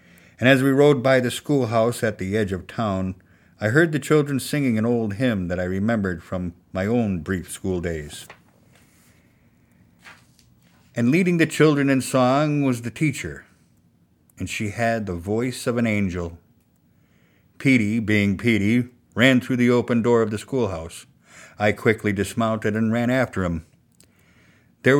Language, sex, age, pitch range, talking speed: English, male, 50-69, 95-120 Hz, 155 wpm